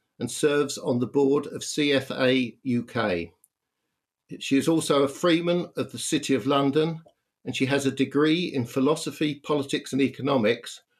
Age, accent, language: 60-79, British, English